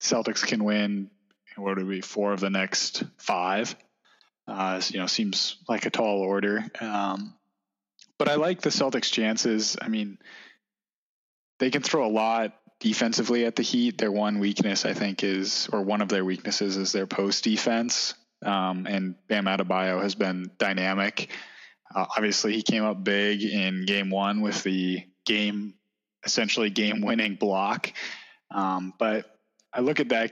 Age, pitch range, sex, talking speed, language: 20-39, 95-105 Hz, male, 160 wpm, English